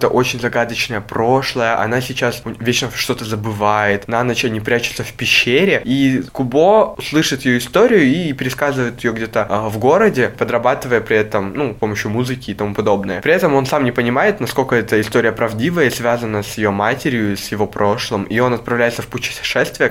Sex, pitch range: male, 105-120 Hz